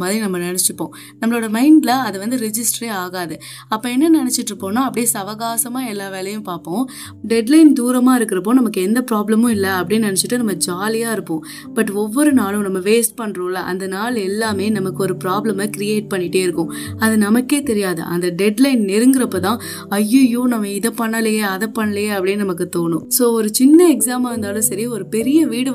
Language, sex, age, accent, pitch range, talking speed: Tamil, female, 20-39, native, 190-240 Hz, 165 wpm